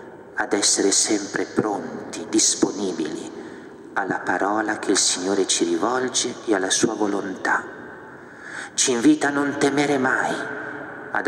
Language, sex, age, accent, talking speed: Italian, male, 50-69, native, 120 wpm